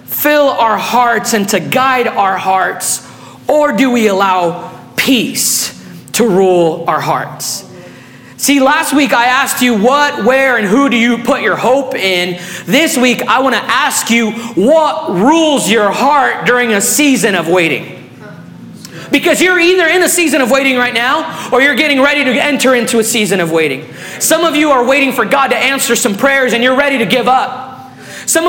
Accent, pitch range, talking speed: American, 225-300 Hz, 185 wpm